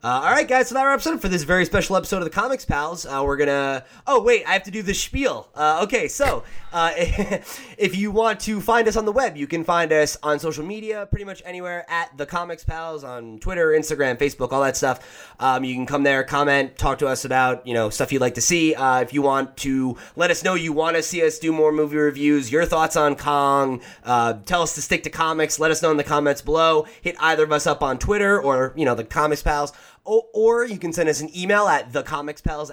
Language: English